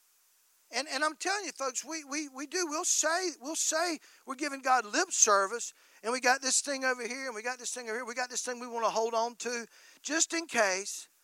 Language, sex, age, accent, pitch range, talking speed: English, male, 50-69, American, 220-310 Hz, 245 wpm